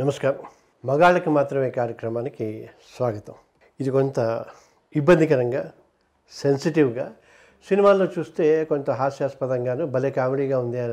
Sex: male